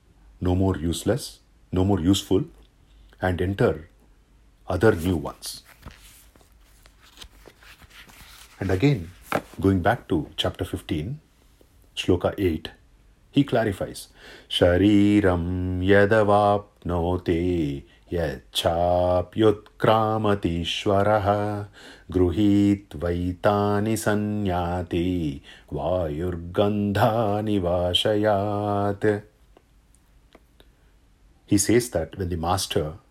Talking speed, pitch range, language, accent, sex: 75 wpm, 85-105 Hz, English, Indian, male